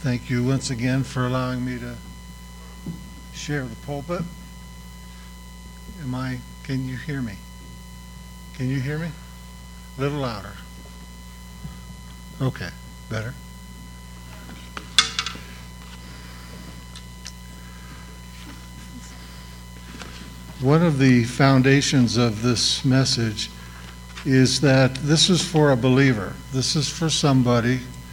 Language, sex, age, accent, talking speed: English, male, 60-79, American, 95 wpm